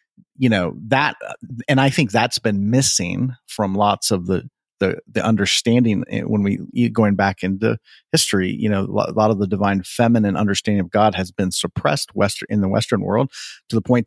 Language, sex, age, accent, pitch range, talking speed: English, male, 40-59, American, 100-120 Hz, 190 wpm